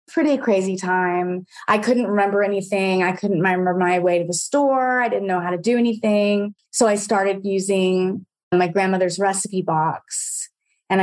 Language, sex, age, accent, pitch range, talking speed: English, female, 20-39, American, 180-200 Hz, 170 wpm